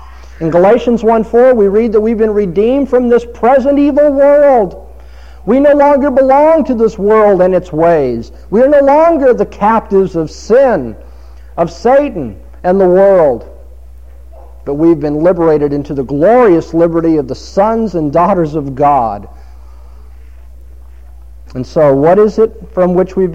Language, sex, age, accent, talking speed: English, male, 50-69, American, 155 wpm